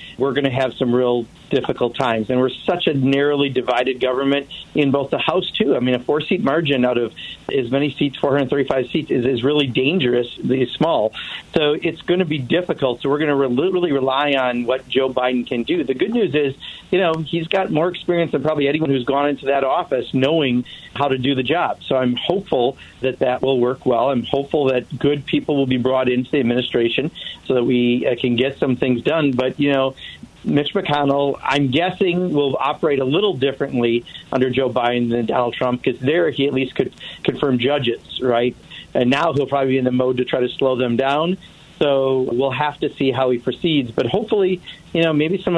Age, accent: 50-69, American